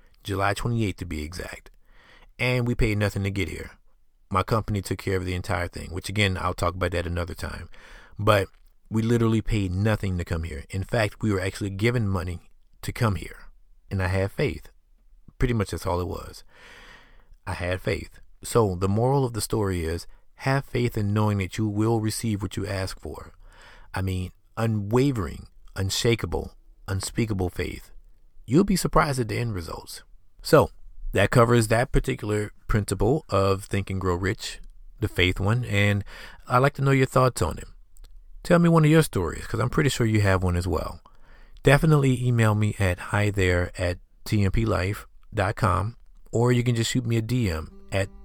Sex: male